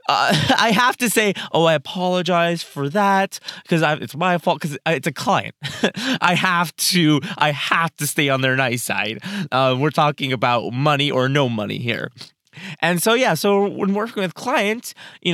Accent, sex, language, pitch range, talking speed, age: American, male, English, 150-200 Hz, 185 wpm, 20-39